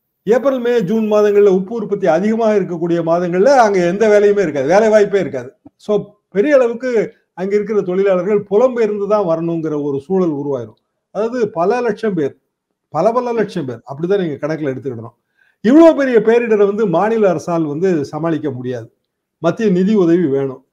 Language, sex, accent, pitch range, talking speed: Tamil, male, native, 160-210 Hz, 150 wpm